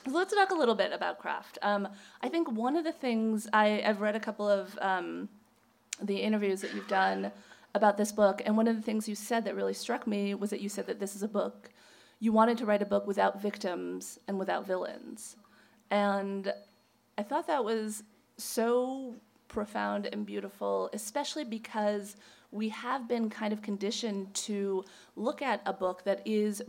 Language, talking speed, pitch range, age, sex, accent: English, 190 wpm, 195-220 Hz, 30-49, female, American